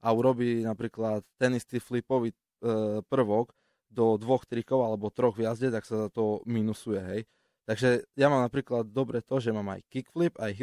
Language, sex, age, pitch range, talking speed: Slovak, male, 20-39, 105-120 Hz, 180 wpm